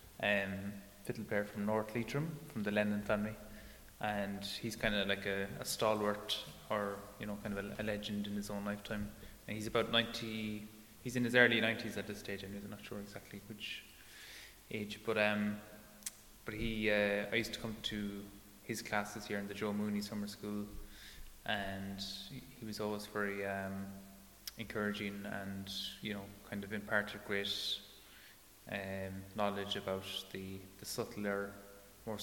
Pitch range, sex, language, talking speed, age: 100-105 Hz, male, English, 170 wpm, 20-39